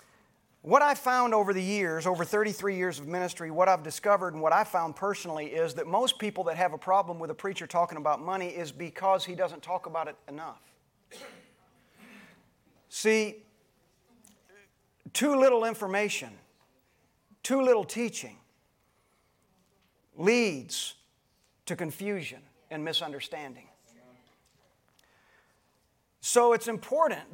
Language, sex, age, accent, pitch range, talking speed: English, male, 40-59, American, 170-225 Hz, 125 wpm